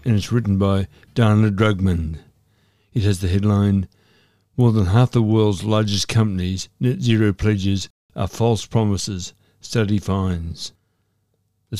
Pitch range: 100-120 Hz